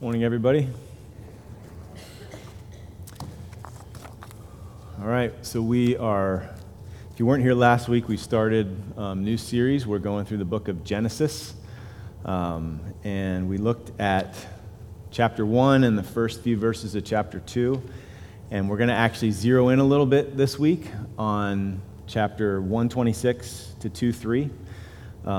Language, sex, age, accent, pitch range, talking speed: English, male, 30-49, American, 100-115 Hz, 135 wpm